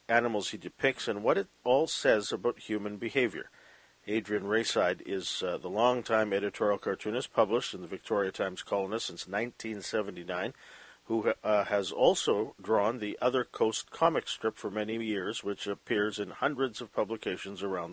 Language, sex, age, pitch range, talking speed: English, male, 50-69, 105-125 Hz, 155 wpm